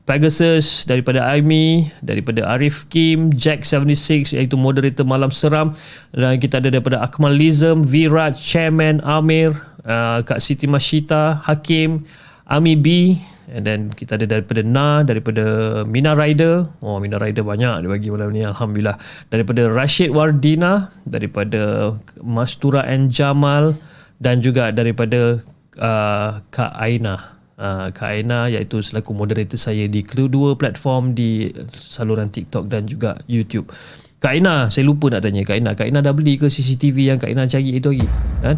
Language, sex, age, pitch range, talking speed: Malay, male, 30-49, 110-150 Hz, 140 wpm